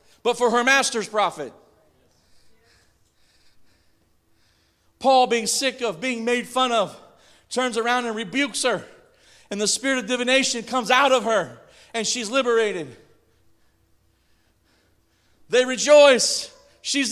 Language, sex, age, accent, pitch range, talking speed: English, male, 40-59, American, 205-270 Hz, 115 wpm